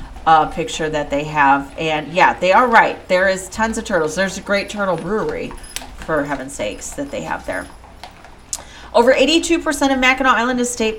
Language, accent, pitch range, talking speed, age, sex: English, American, 175-225 Hz, 190 wpm, 40-59, female